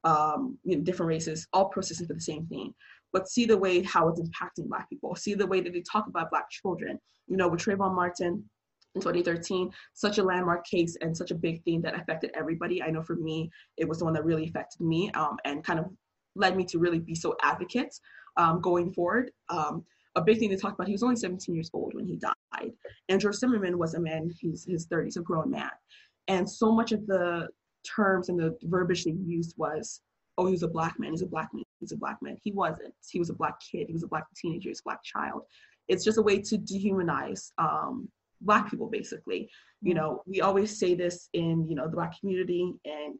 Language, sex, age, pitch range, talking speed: English, female, 20-39, 165-195 Hz, 230 wpm